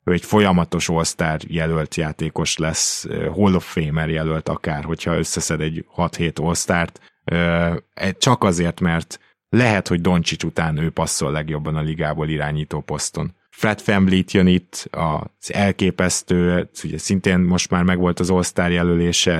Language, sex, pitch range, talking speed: Hungarian, male, 85-95 Hz, 140 wpm